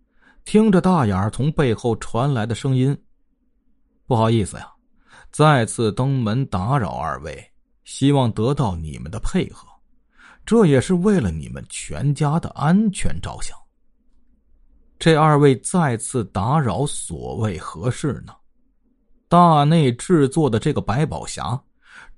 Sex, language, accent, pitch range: male, Chinese, native, 120-195 Hz